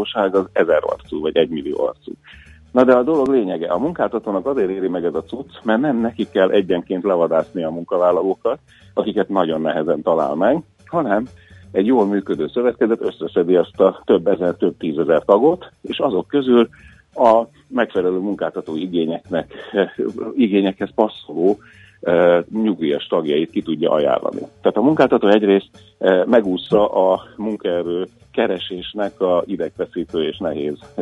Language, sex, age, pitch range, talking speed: Hungarian, male, 50-69, 90-120 Hz, 135 wpm